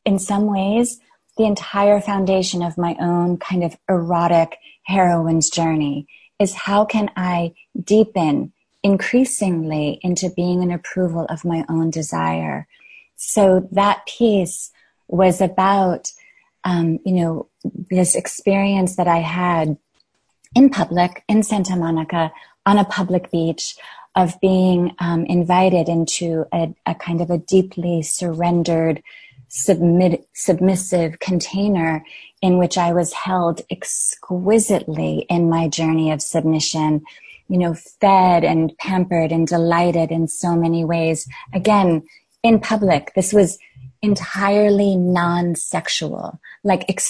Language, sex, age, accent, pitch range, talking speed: English, female, 30-49, American, 165-195 Hz, 120 wpm